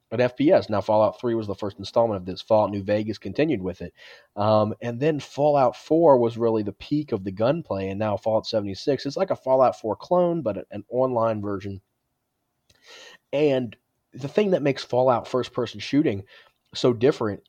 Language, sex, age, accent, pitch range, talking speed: English, male, 30-49, American, 100-130 Hz, 180 wpm